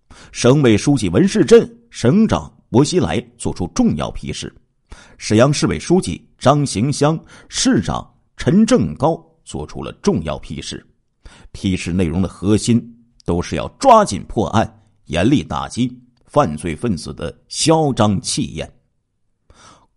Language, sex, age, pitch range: Chinese, male, 50-69, 95-145 Hz